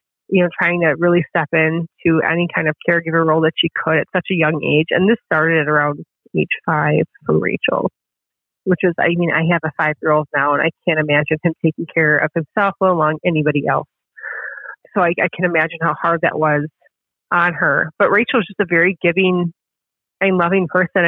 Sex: female